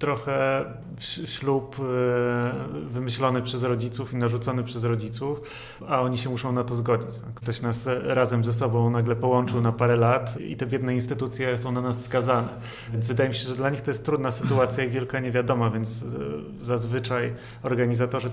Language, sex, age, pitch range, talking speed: Polish, male, 30-49, 115-125 Hz, 165 wpm